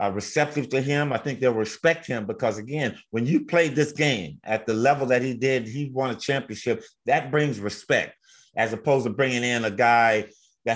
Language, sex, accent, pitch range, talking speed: English, male, American, 115-150 Hz, 200 wpm